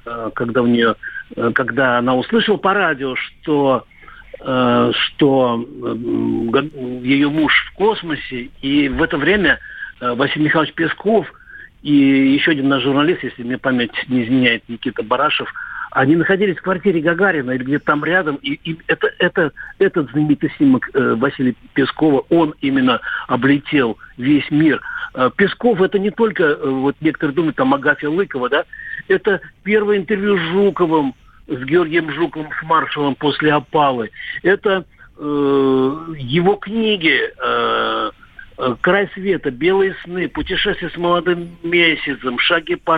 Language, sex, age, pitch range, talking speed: Russian, male, 60-79, 140-200 Hz, 130 wpm